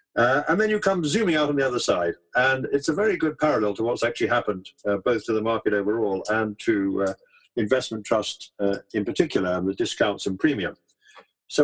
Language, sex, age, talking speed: English, male, 50-69, 210 wpm